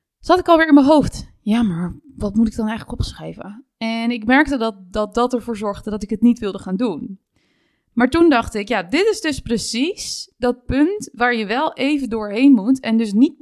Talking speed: 220 wpm